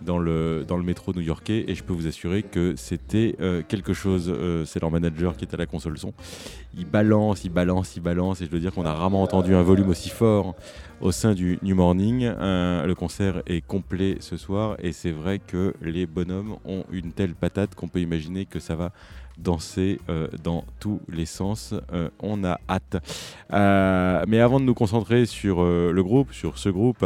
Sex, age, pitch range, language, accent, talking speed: male, 30-49, 85-95 Hz, French, French, 210 wpm